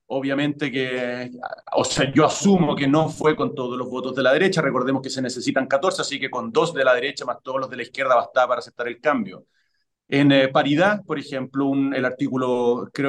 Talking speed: 220 wpm